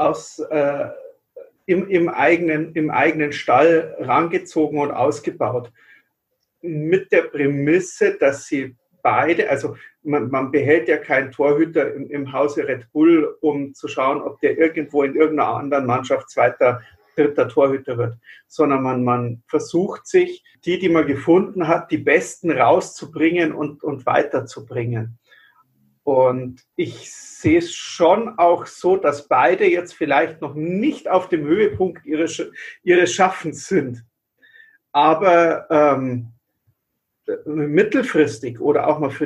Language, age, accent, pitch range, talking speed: German, 50-69, German, 140-190 Hz, 130 wpm